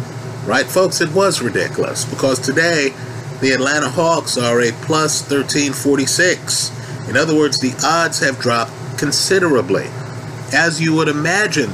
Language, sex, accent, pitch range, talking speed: English, male, American, 130-155 Hz, 135 wpm